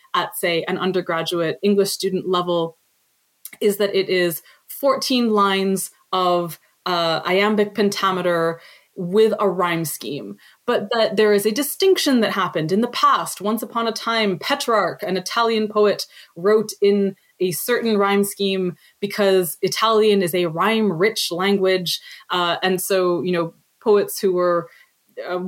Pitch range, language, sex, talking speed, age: 185-240 Hz, English, female, 145 wpm, 20-39